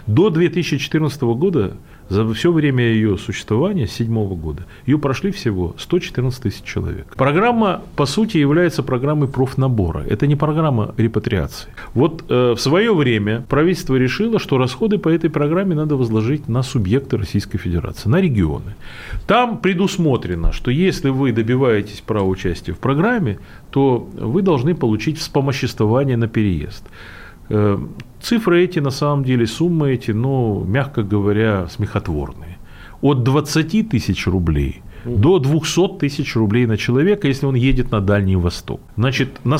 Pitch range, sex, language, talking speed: 105-155 Hz, male, Russian, 140 wpm